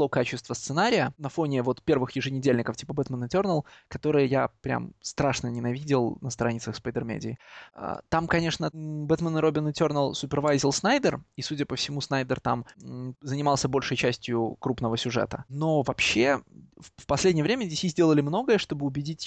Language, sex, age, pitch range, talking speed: Russian, male, 20-39, 125-155 Hz, 150 wpm